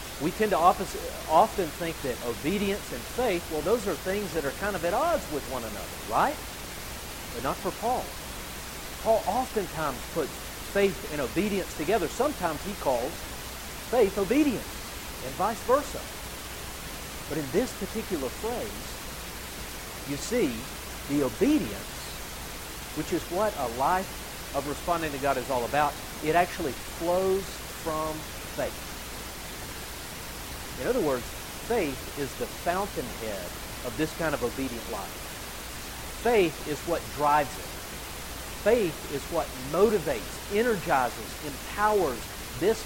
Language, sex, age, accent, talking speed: English, male, 50-69, American, 130 wpm